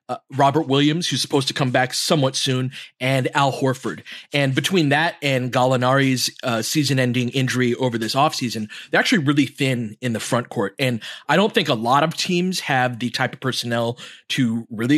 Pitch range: 125-155 Hz